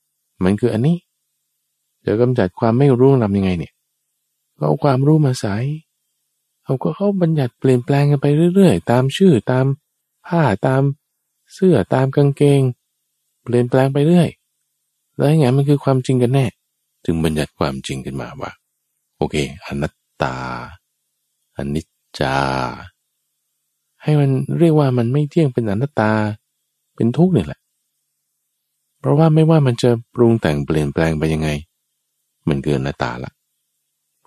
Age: 20-39